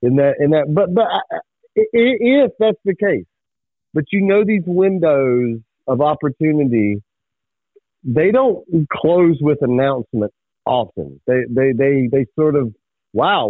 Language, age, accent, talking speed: English, 40-59, American, 135 wpm